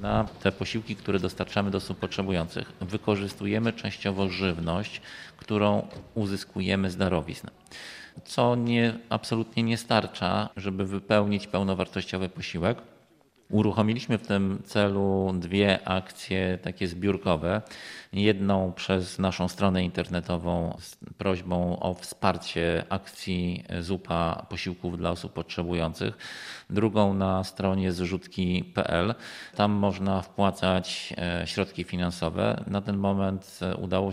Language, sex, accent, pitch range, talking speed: Polish, male, native, 95-105 Hz, 105 wpm